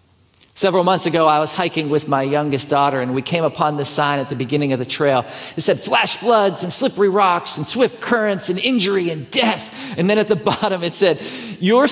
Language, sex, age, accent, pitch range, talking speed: English, male, 50-69, American, 130-160 Hz, 220 wpm